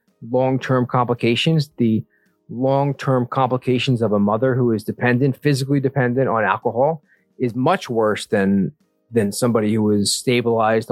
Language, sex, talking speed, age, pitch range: English, male, 130 wpm, 40-59, 110-135 Hz